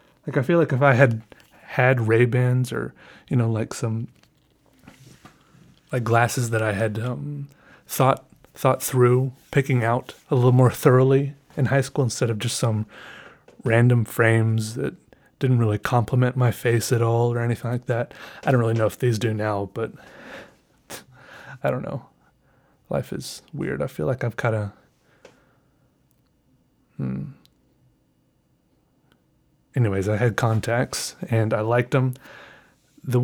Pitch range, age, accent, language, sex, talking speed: 110-130 Hz, 20-39, American, English, male, 145 wpm